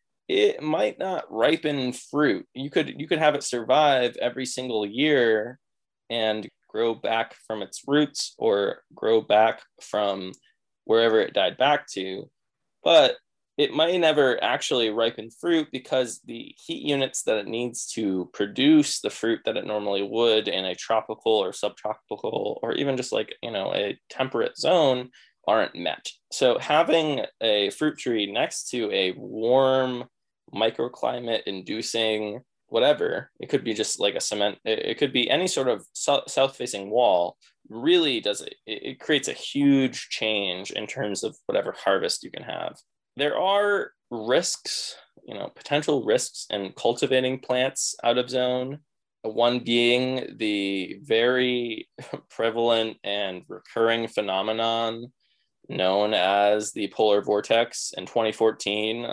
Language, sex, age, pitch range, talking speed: English, male, 20-39, 110-150 Hz, 140 wpm